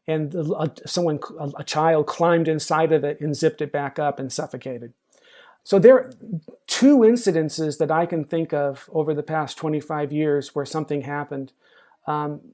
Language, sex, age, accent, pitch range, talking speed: English, male, 40-59, American, 150-175 Hz, 165 wpm